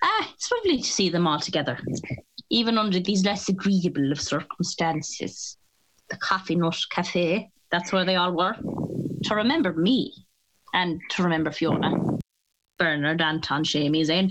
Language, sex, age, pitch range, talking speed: English, female, 20-39, 165-200 Hz, 145 wpm